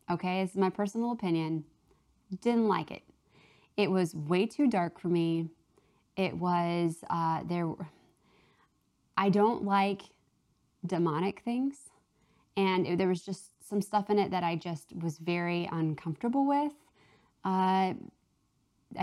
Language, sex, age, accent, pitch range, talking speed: English, female, 20-39, American, 165-205 Hz, 130 wpm